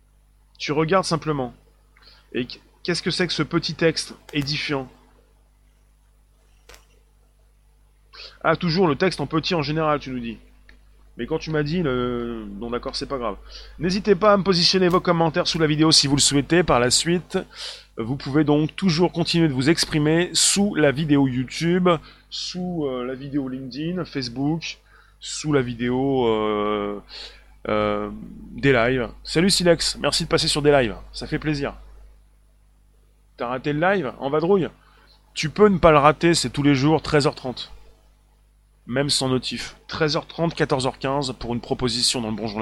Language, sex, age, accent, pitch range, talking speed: French, male, 20-39, French, 125-160 Hz, 160 wpm